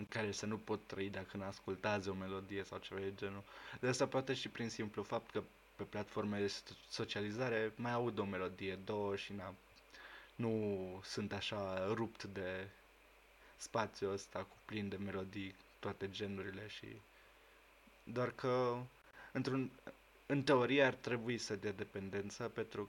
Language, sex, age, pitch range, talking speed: Romanian, male, 20-39, 100-130 Hz, 150 wpm